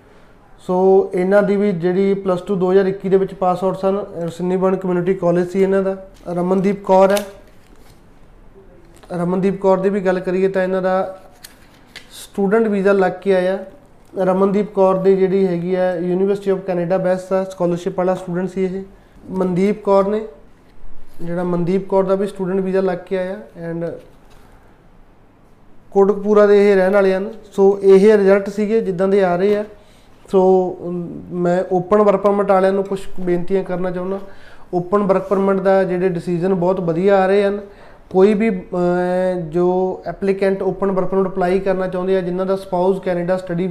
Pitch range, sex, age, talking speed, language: 185-200 Hz, male, 20-39, 160 wpm, Punjabi